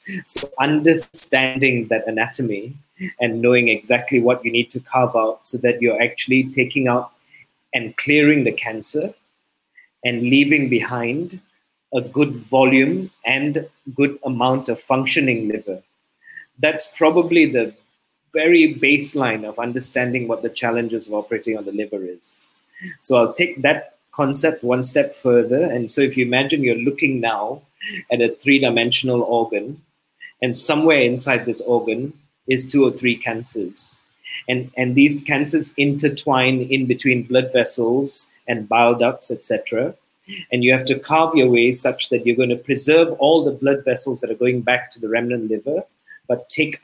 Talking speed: 155 wpm